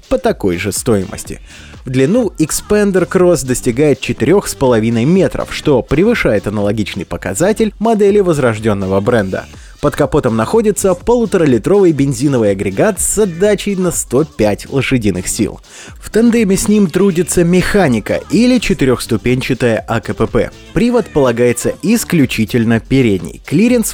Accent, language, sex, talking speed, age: native, Russian, male, 110 wpm, 20-39